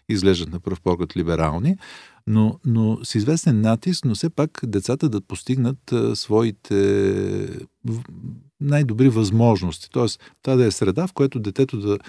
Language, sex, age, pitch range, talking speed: Bulgarian, male, 40-59, 95-130 Hz, 150 wpm